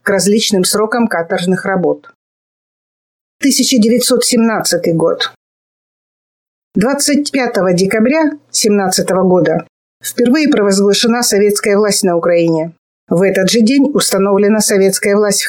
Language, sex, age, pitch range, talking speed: Russian, female, 50-69, 195-245 Hz, 95 wpm